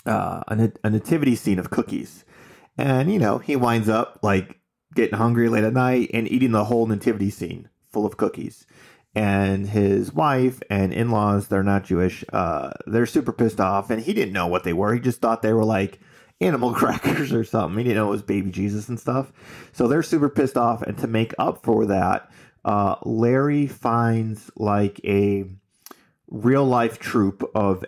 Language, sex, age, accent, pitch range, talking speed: English, male, 30-49, American, 100-115 Hz, 185 wpm